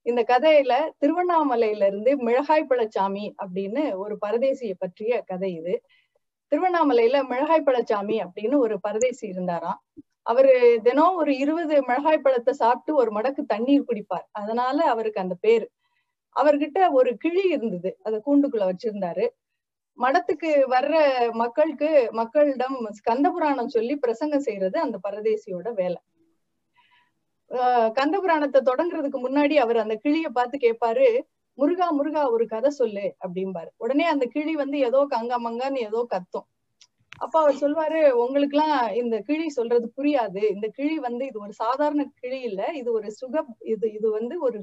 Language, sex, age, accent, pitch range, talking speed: Tamil, female, 30-49, native, 225-300 Hz, 130 wpm